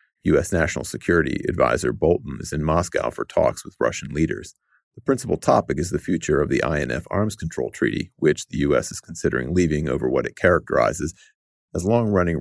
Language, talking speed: English, 180 wpm